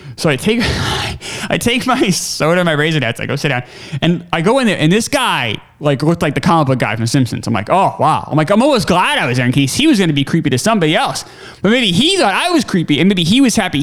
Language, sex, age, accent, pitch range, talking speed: English, male, 20-39, American, 135-190 Hz, 295 wpm